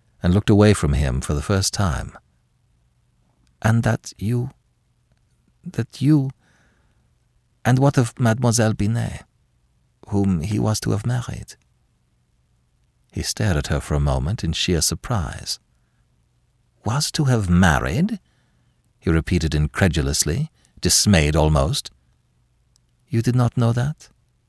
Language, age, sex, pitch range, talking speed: English, 50-69, male, 80-120 Hz, 120 wpm